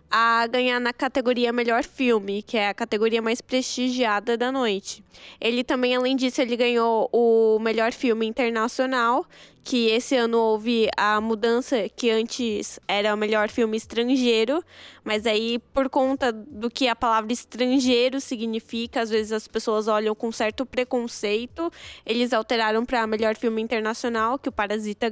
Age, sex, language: 10-29, female, Portuguese